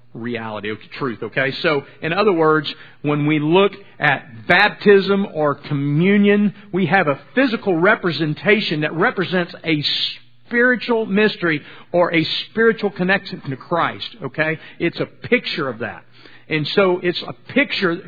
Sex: male